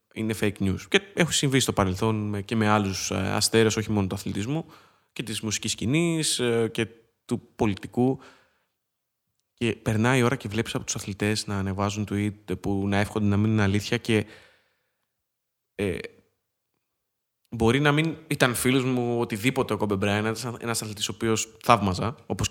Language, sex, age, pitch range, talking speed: Greek, male, 20-39, 105-125 Hz, 160 wpm